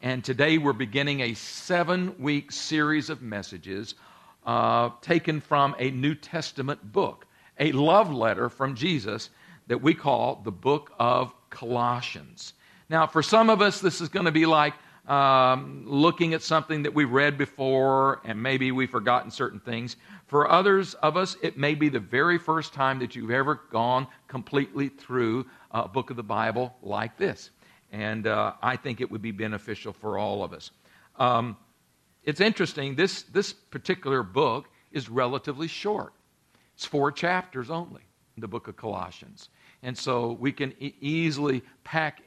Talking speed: 165 wpm